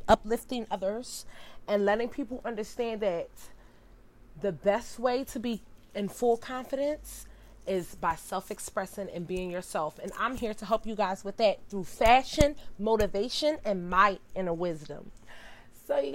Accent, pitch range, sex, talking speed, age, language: American, 180-235 Hz, female, 150 wpm, 30-49, English